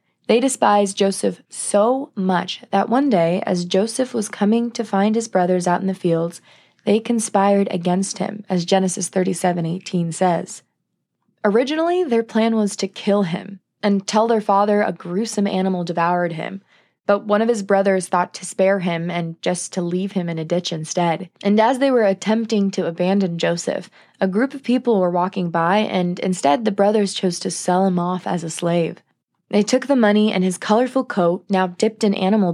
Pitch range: 180-215 Hz